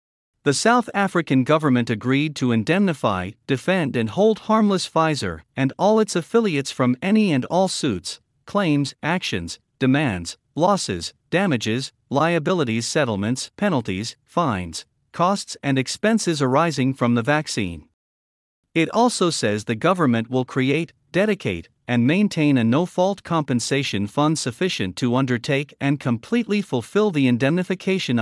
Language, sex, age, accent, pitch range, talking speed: English, male, 50-69, American, 115-165 Hz, 125 wpm